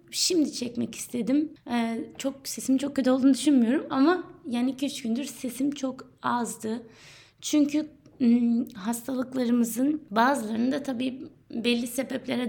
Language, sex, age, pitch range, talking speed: Turkish, female, 20-39, 220-265 Hz, 120 wpm